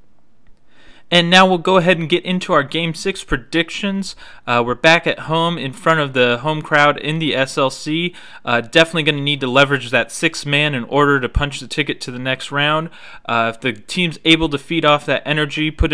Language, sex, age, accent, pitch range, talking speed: English, male, 30-49, American, 125-155 Hz, 210 wpm